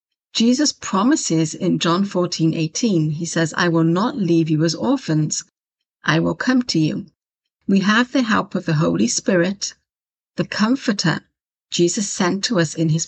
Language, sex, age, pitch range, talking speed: English, female, 50-69, 165-220 Hz, 165 wpm